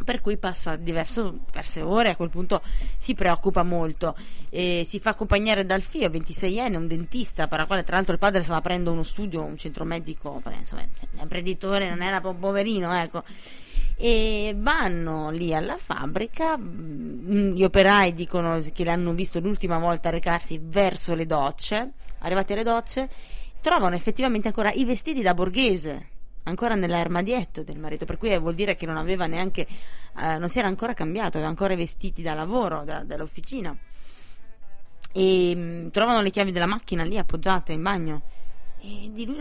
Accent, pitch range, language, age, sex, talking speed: native, 165-205 Hz, Italian, 20-39, female, 165 wpm